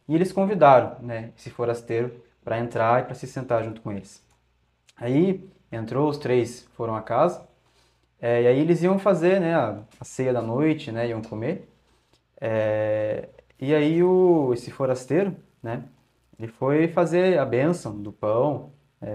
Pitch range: 115-150 Hz